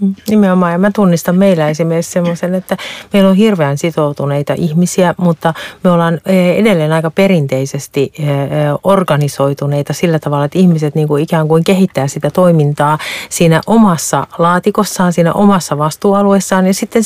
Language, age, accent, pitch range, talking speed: Finnish, 40-59, native, 160-200 Hz, 135 wpm